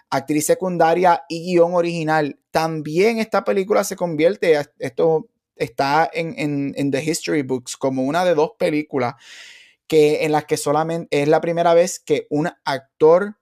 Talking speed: 145 wpm